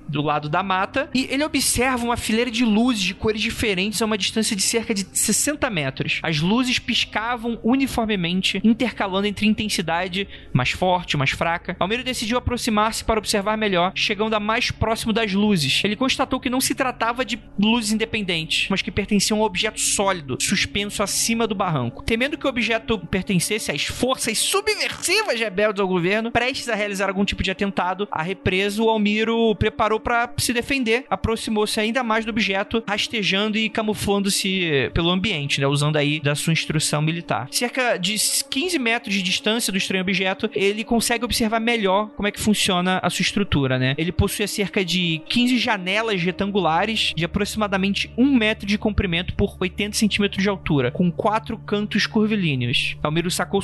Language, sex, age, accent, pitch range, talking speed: Portuguese, male, 20-39, Brazilian, 185-230 Hz, 170 wpm